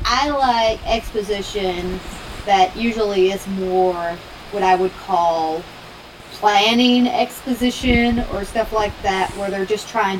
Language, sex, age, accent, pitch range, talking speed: English, female, 30-49, American, 185-240 Hz, 125 wpm